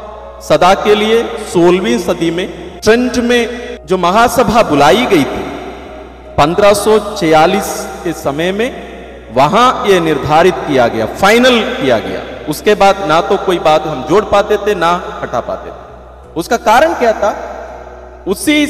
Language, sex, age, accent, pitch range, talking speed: English, male, 40-59, Indian, 175-225 Hz, 140 wpm